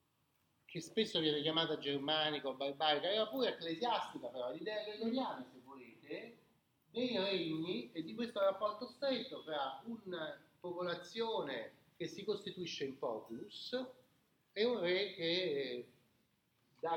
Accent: native